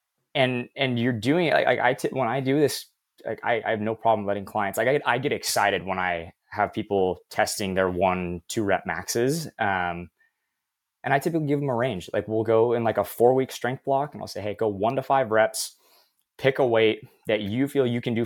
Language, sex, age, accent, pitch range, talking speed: English, male, 20-39, American, 95-125 Hz, 225 wpm